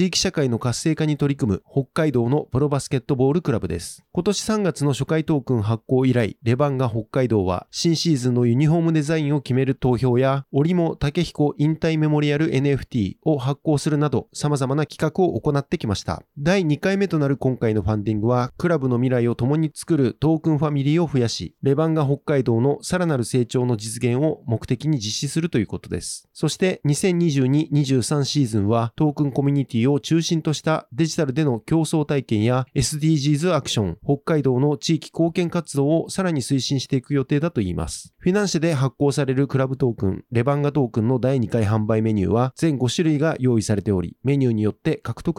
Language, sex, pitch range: Japanese, male, 125-160 Hz